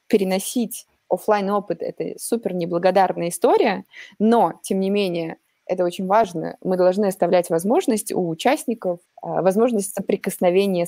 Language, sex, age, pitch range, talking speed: Russian, female, 20-39, 165-210 Hz, 120 wpm